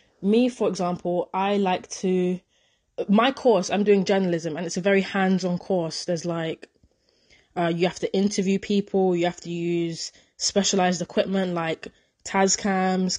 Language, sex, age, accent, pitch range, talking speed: English, female, 20-39, British, 180-210 Hz, 150 wpm